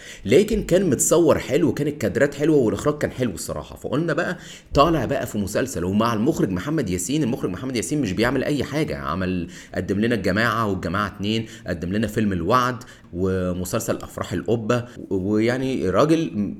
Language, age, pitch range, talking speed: Arabic, 30-49, 100-135 Hz, 155 wpm